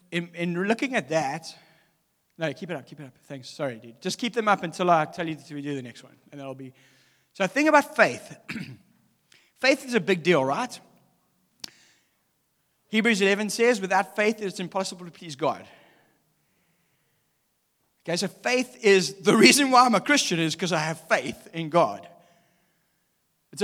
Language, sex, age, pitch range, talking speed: English, male, 40-59, 165-215 Hz, 175 wpm